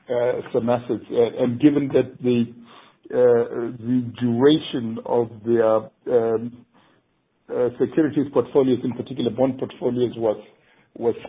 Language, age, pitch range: English, 60-79, 120-135 Hz